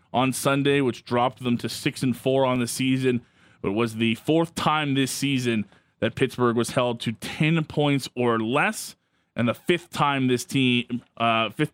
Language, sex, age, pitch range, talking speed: English, male, 20-39, 115-140 Hz, 190 wpm